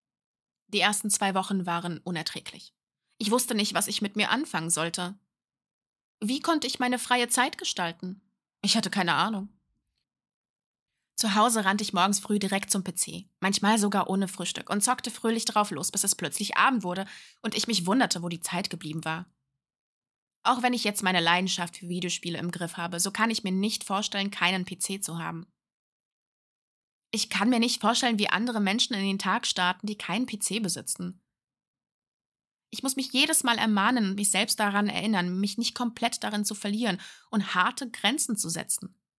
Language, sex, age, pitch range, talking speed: German, female, 20-39, 180-225 Hz, 180 wpm